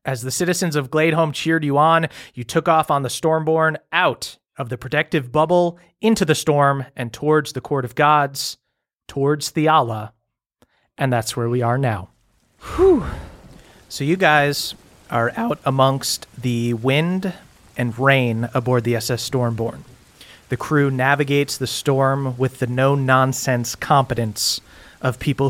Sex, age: male, 30-49